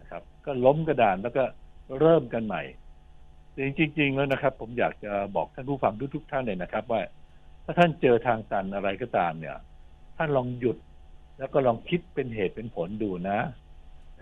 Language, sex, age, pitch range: Thai, male, 60-79, 100-145 Hz